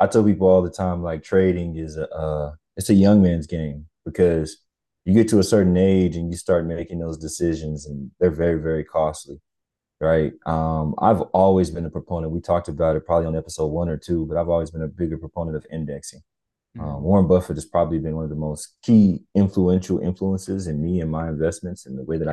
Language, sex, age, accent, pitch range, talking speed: English, male, 20-39, American, 80-90 Hz, 220 wpm